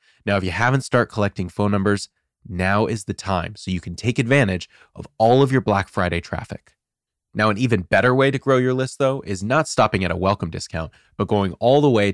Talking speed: 230 wpm